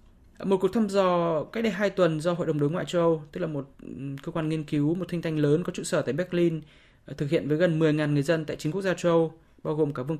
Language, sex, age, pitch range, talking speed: Vietnamese, male, 20-39, 150-175 Hz, 280 wpm